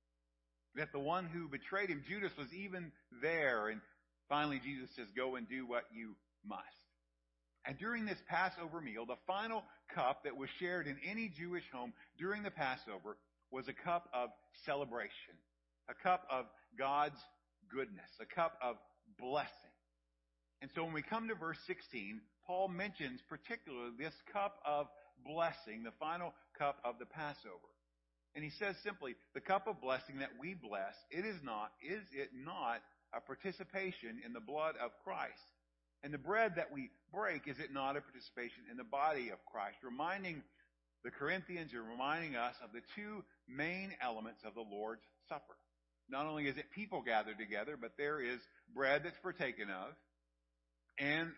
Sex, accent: male, American